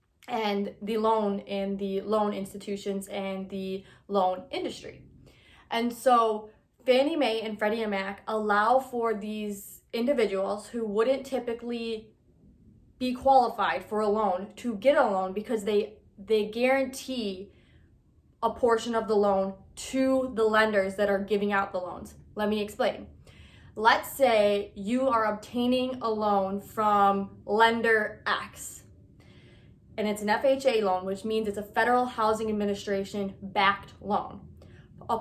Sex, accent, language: female, American, English